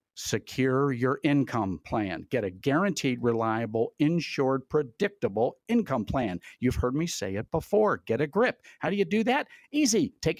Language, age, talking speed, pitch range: English, 50-69, 160 wpm, 115-175 Hz